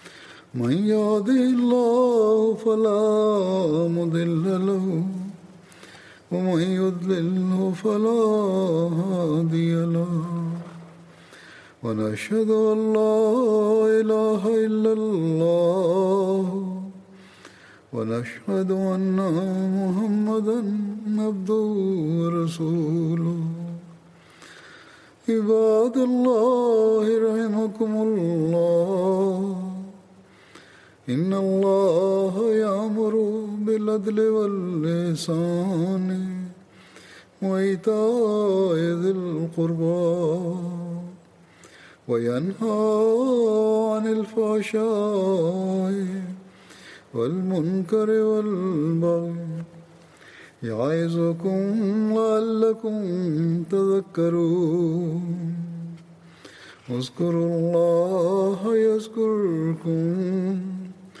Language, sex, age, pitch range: Tamil, male, 60-79, 170-215 Hz